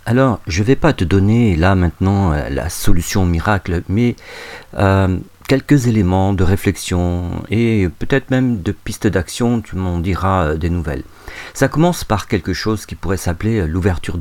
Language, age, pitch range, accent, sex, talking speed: French, 50-69, 85-110 Hz, French, male, 160 wpm